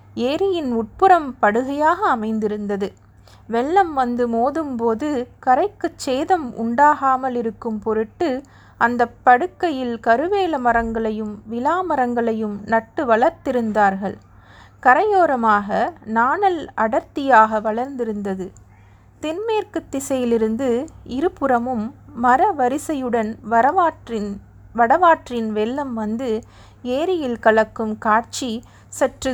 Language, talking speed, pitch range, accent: Tamil, 75 wpm, 215-275 Hz, native